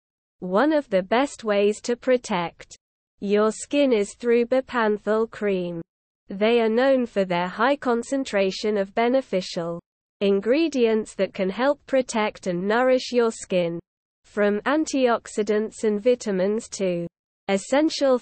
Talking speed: 120 wpm